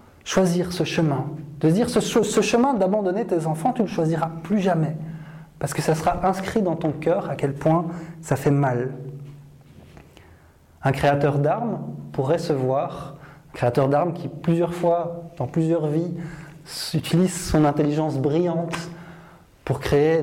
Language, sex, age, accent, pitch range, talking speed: French, male, 20-39, French, 140-175 Hz, 155 wpm